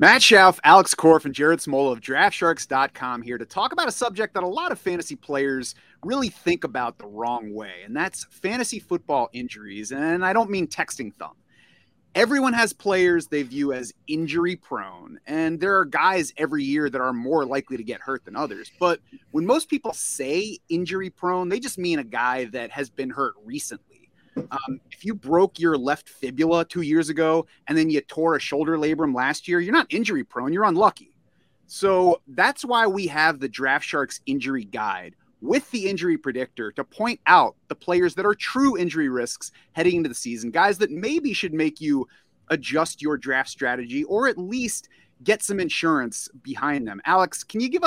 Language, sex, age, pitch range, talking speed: English, male, 30-49, 135-195 Hz, 190 wpm